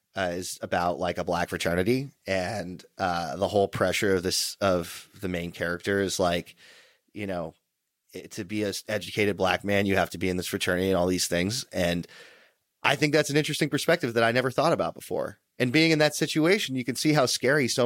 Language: English